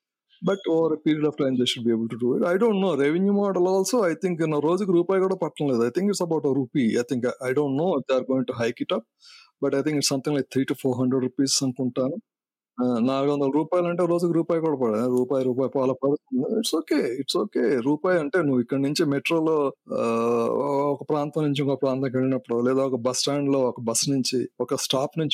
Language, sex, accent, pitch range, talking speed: English, male, Indian, 115-160 Hz, 200 wpm